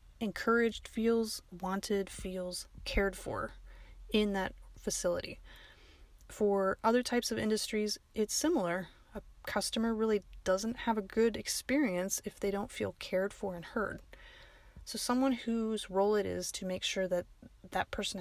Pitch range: 185-230 Hz